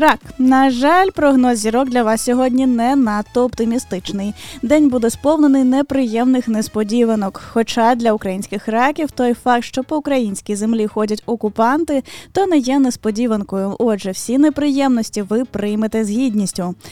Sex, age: female, 10-29